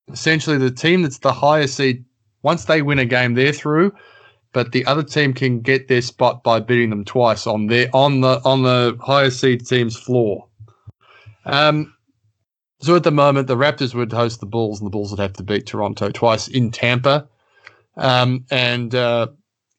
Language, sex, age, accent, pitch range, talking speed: English, male, 20-39, Australian, 110-140 Hz, 185 wpm